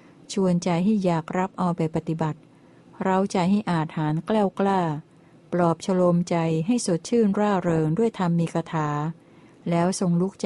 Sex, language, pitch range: female, Thai, 165-200 Hz